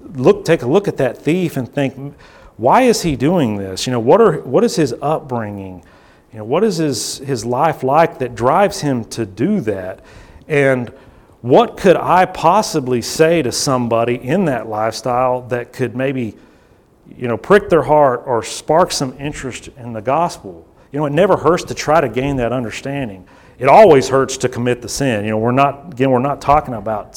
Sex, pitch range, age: male, 115-145 Hz, 40-59